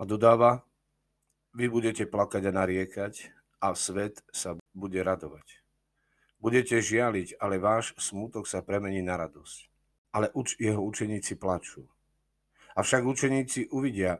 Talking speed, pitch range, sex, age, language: 125 wpm, 90-110 Hz, male, 50-69, Slovak